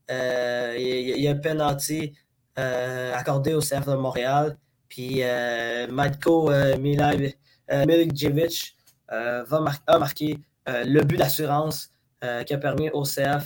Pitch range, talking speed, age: 130-155 Hz, 145 wpm, 20-39